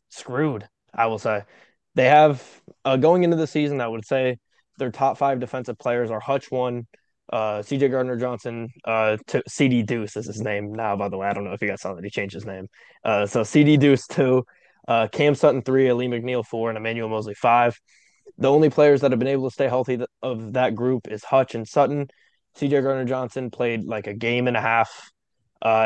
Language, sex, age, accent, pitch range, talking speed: English, male, 20-39, American, 110-135 Hz, 200 wpm